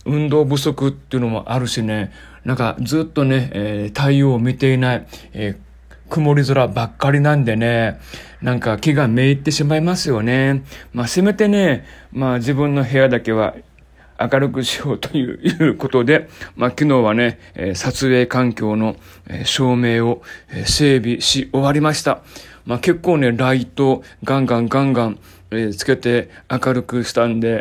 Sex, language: male, Japanese